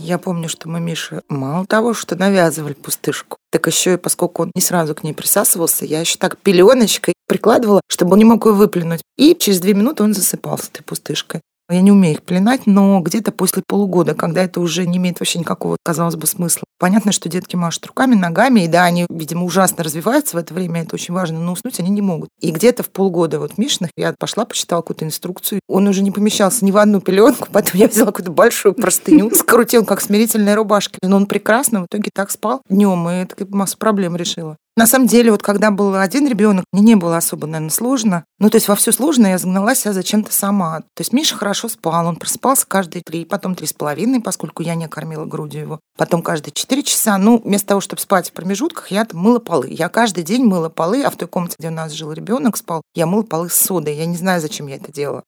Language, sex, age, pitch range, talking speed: Russian, female, 30-49, 170-210 Hz, 225 wpm